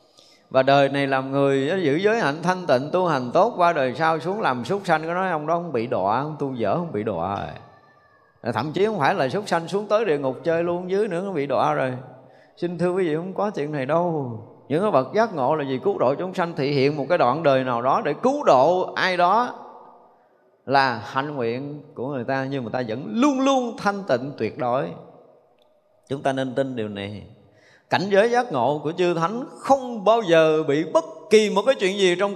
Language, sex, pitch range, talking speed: Vietnamese, male, 135-195 Hz, 235 wpm